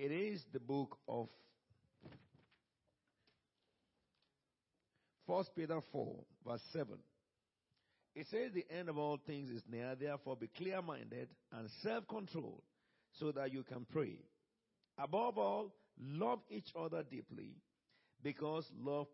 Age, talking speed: 50-69, 115 wpm